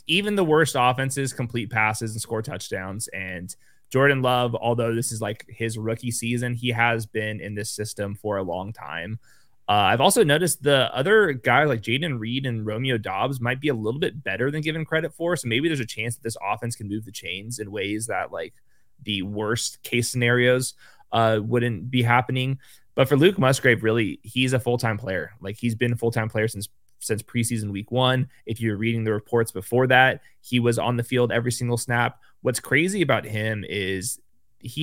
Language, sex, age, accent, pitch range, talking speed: English, male, 20-39, American, 110-130 Hz, 200 wpm